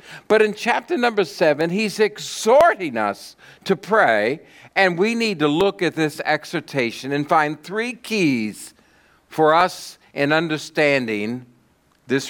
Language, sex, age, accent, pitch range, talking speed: English, male, 60-79, American, 140-185 Hz, 130 wpm